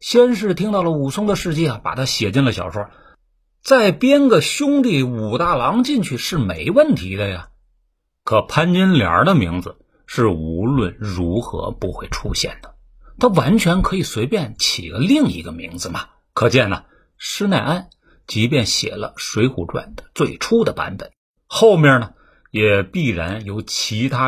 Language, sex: Chinese, male